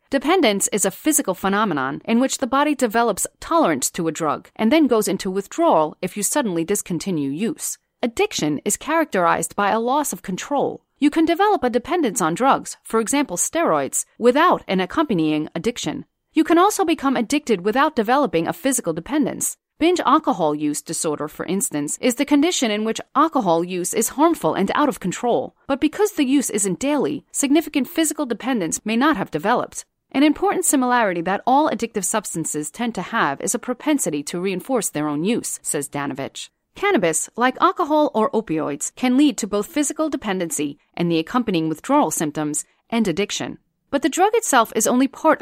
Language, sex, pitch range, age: English, female, 180-295 Hz, 30-49